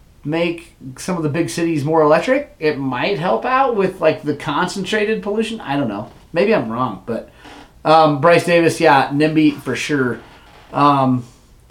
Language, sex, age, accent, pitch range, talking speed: English, male, 30-49, American, 135-195 Hz, 165 wpm